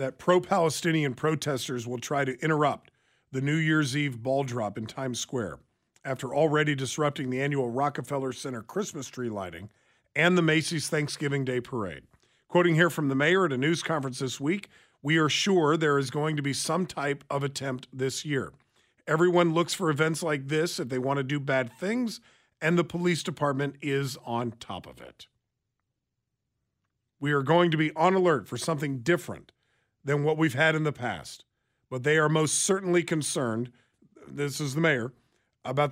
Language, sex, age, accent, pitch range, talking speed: English, male, 40-59, American, 135-170 Hz, 180 wpm